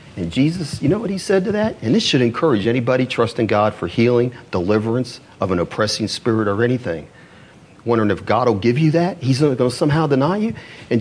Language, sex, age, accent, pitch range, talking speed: English, male, 40-59, American, 100-155 Hz, 215 wpm